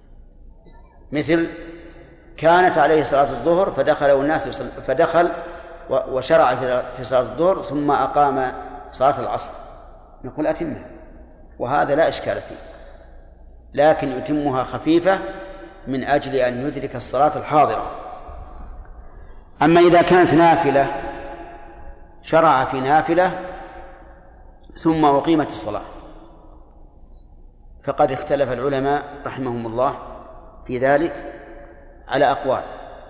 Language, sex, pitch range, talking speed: Arabic, male, 115-155 Hz, 90 wpm